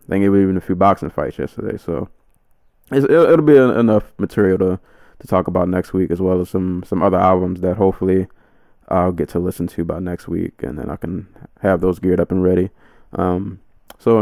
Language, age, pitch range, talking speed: English, 20-39, 90-105 Hz, 220 wpm